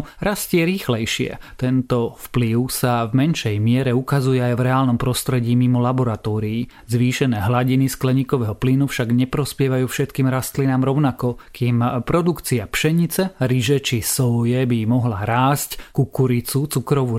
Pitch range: 120-135 Hz